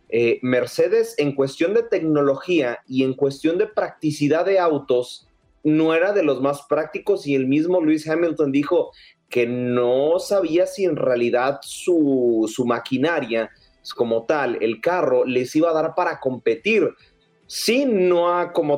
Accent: Mexican